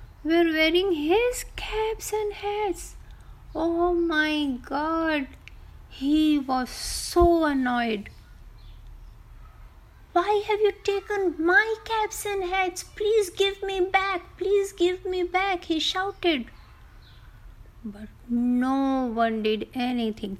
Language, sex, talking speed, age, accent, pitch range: Hindi, female, 105 wpm, 30-49, native, 240-350 Hz